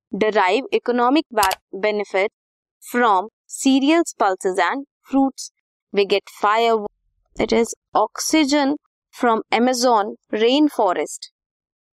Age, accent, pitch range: 20-39, native, 210-285 Hz